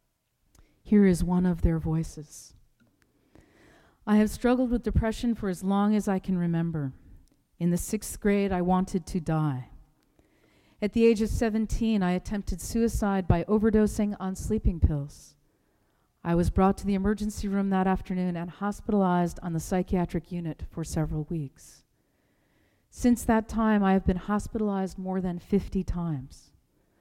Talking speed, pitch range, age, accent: 150 wpm, 165-205 Hz, 40-59, American